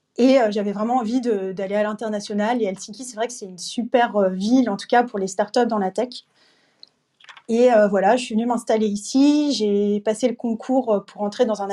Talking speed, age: 215 wpm, 30-49